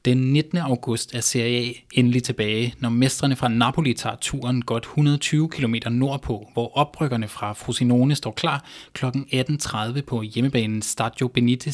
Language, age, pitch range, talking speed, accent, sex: Danish, 20-39, 120-140 Hz, 155 wpm, native, male